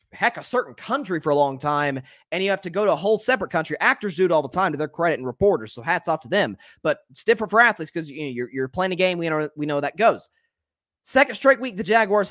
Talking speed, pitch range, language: 275 wpm, 130-215 Hz, English